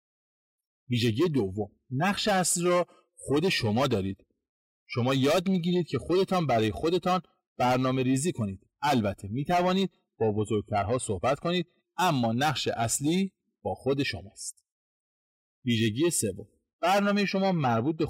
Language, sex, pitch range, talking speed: Persian, male, 110-165 Hz, 120 wpm